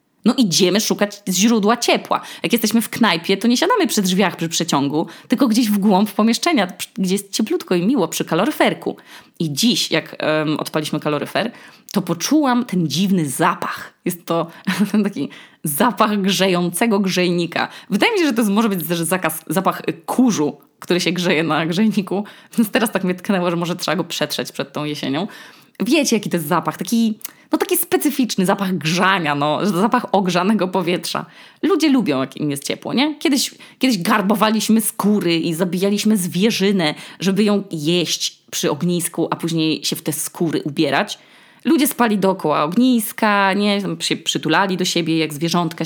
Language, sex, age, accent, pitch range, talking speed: Polish, female, 20-39, native, 170-230 Hz, 165 wpm